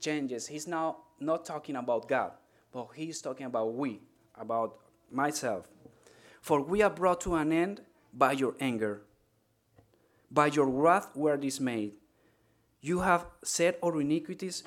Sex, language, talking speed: male, English, 140 wpm